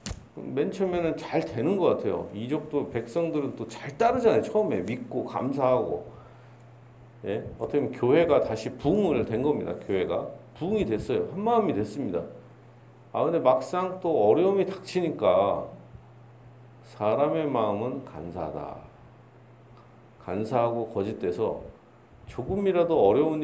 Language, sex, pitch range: Korean, male, 120-145 Hz